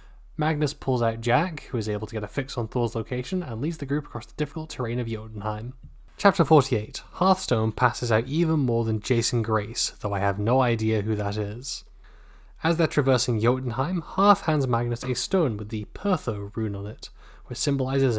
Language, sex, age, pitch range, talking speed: English, male, 10-29, 110-135 Hz, 195 wpm